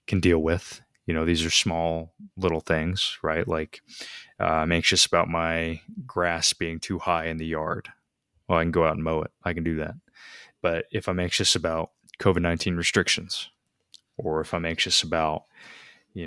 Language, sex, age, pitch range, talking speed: English, male, 20-39, 80-95 Hz, 180 wpm